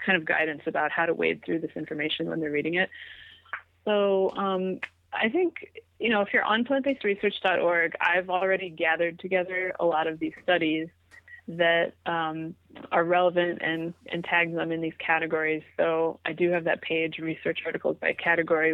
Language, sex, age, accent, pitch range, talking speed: English, female, 30-49, American, 170-205 Hz, 175 wpm